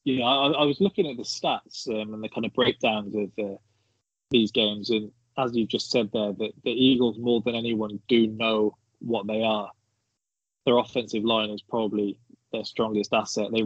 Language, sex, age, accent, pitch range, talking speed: English, male, 20-39, British, 110-120 Hz, 200 wpm